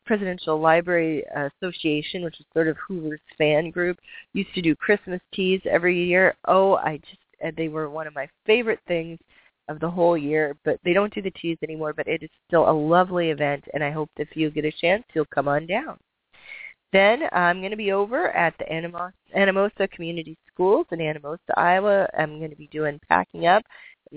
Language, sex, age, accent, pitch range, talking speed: English, female, 30-49, American, 155-195 Hz, 200 wpm